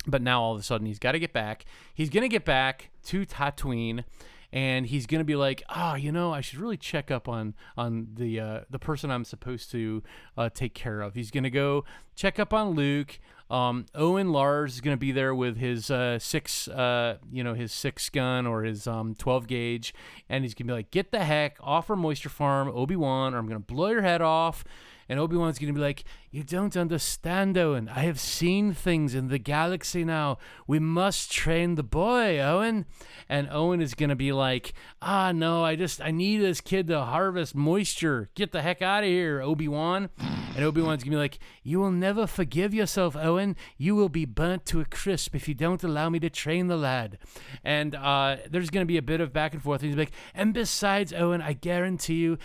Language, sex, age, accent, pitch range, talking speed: English, male, 30-49, American, 130-170 Hz, 215 wpm